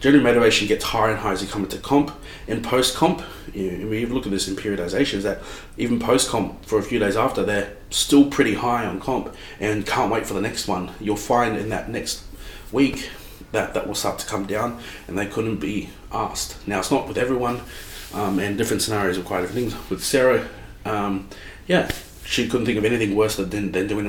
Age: 30-49